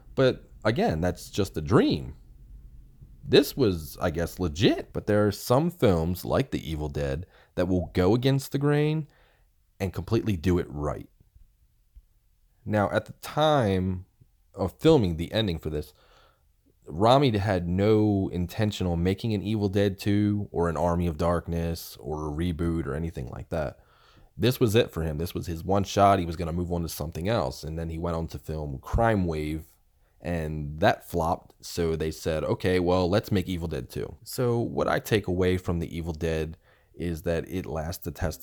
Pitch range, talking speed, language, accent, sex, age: 80-100 Hz, 185 wpm, English, American, male, 30-49